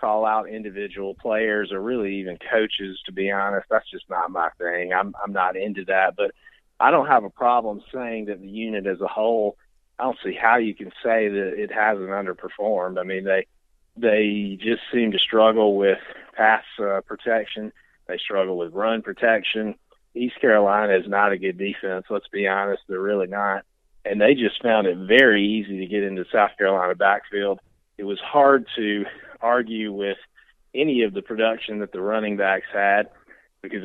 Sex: male